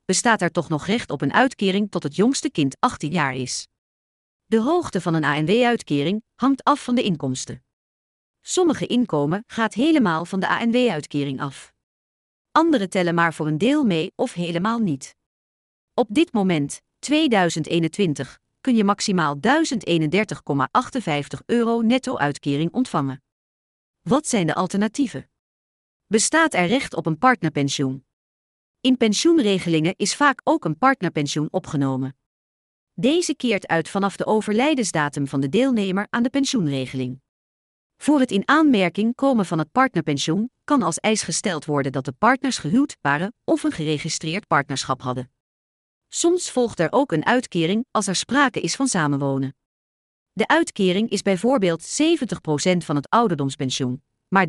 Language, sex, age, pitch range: English, female, 40-59, 145-240 Hz